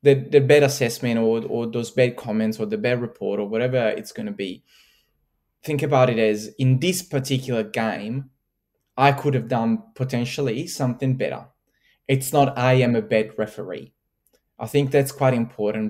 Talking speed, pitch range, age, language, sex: 175 wpm, 115-140 Hz, 20-39, English, male